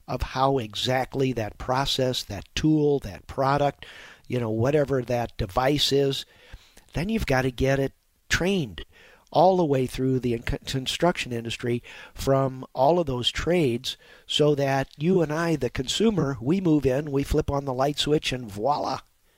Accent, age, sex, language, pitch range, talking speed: American, 50-69, male, English, 115-145 Hz, 160 wpm